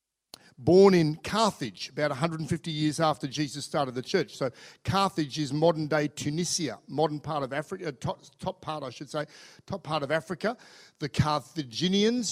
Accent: Australian